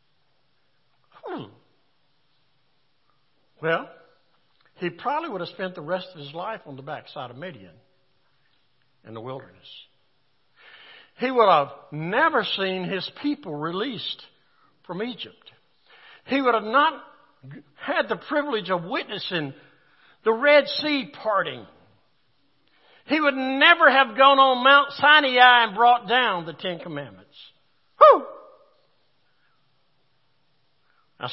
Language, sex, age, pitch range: English, male, 60-79, 145-225 Hz